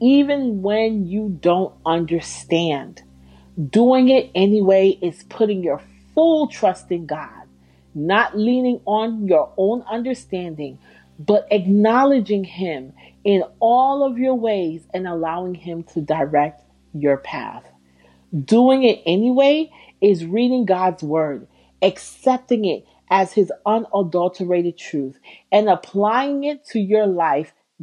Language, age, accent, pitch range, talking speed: English, 40-59, American, 165-230 Hz, 120 wpm